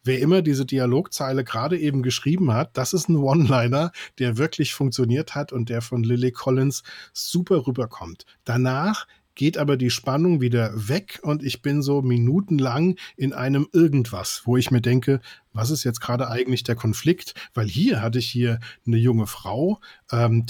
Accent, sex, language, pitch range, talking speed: German, male, German, 120-145 Hz, 170 wpm